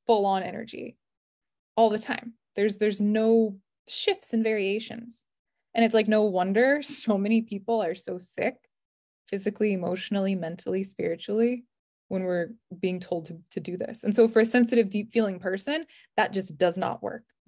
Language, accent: English, American